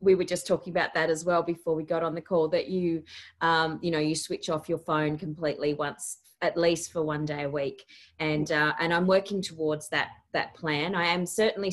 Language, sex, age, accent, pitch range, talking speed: English, female, 30-49, Australian, 160-210 Hz, 230 wpm